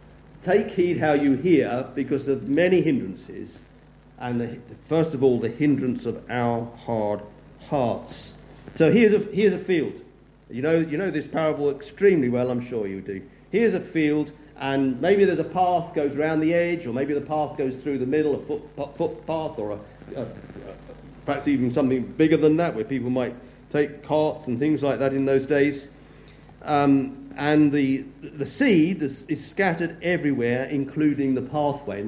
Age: 50-69